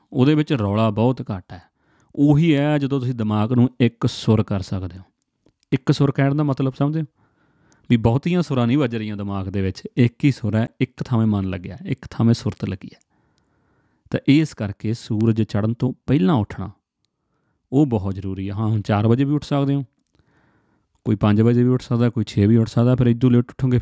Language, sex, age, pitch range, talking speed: Punjabi, male, 30-49, 110-150 Hz, 205 wpm